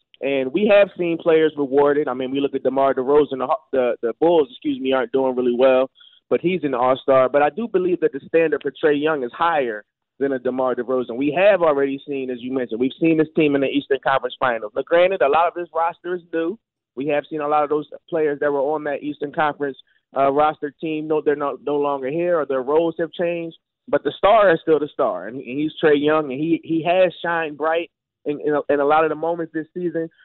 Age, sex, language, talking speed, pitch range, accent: 20-39, male, English, 245 wpm, 140-170 Hz, American